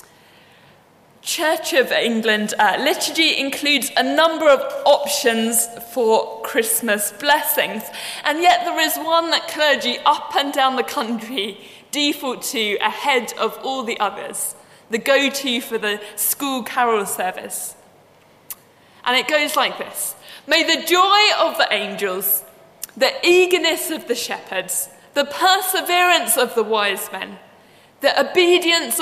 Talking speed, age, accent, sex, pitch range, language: 130 wpm, 20-39, British, female, 230-325 Hz, English